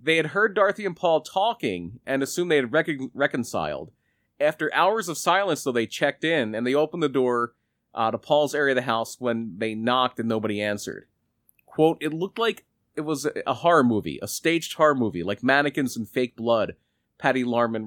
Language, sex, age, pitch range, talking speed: English, male, 30-49, 115-155 Hz, 195 wpm